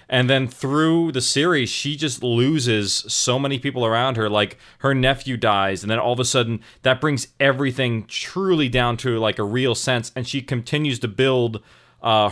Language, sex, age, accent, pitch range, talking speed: English, male, 30-49, American, 115-140 Hz, 190 wpm